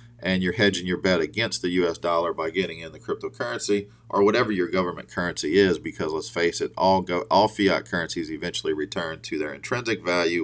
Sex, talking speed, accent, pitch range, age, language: male, 200 wpm, American, 90-115 Hz, 40-59, English